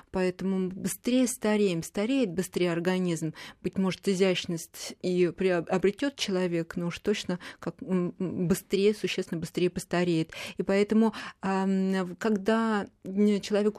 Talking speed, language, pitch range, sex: 105 wpm, Russian, 180-210 Hz, female